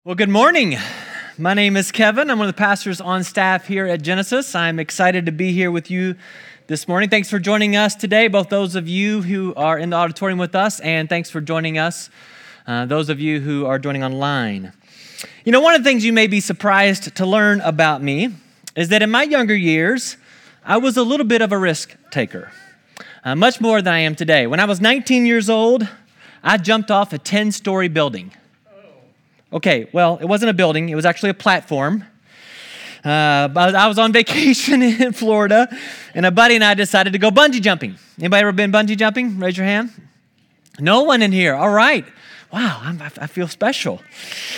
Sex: male